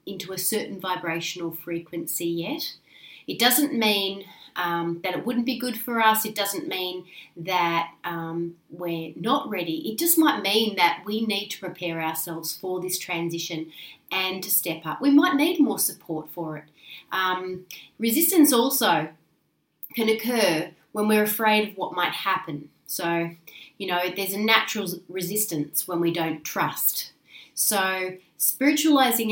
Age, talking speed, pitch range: 30-49, 150 wpm, 170-220 Hz